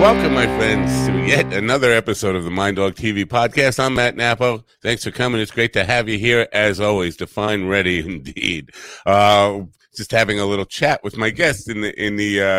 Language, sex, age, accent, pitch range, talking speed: English, male, 50-69, American, 95-120 Hz, 215 wpm